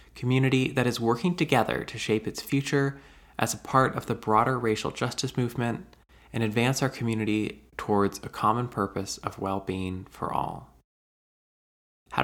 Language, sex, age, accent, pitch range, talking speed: English, male, 20-39, American, 95-130 Hz, 150 wpm